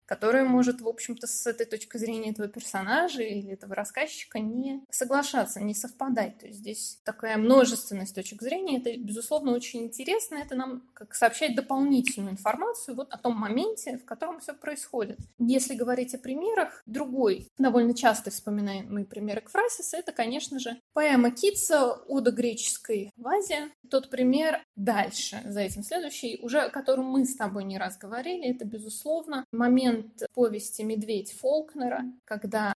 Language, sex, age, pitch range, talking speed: Russian, female, 20-39, 215-265 Hz, 150 wpm